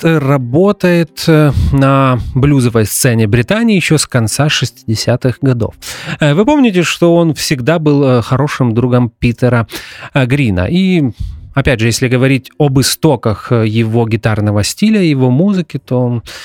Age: 30-49